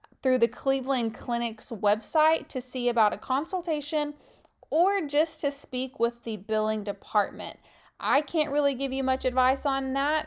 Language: English